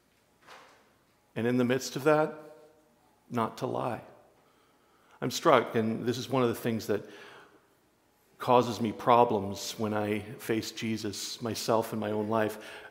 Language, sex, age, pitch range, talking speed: English, male, 40-59, 110-150 Hz, 145 wpm